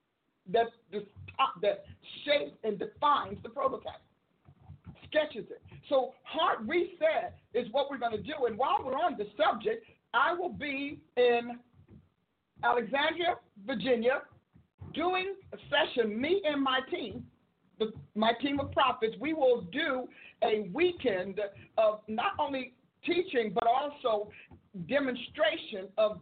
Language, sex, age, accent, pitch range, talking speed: English, male, 50-69, American, 230-285 Hz, 120 wpm